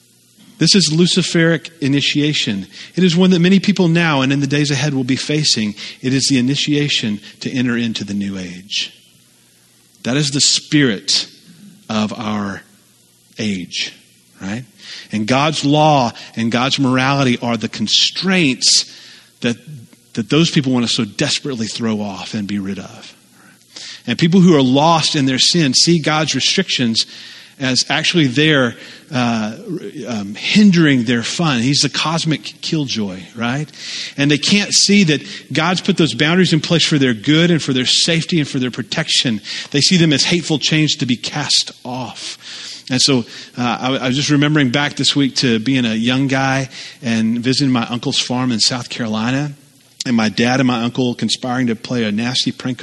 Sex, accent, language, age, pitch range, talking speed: male, American, English, 40-59, 115-150 Hz, 175 wpm